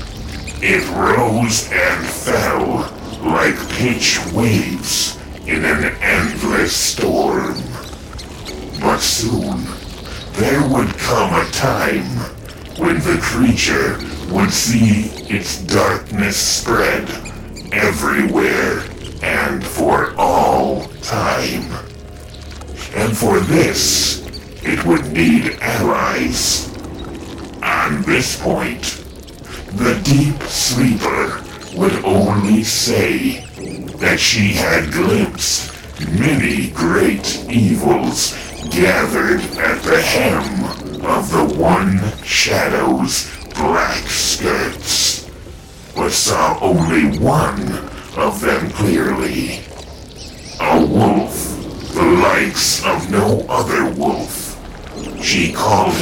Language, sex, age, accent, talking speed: English, female, 60-79, American, 85 wpm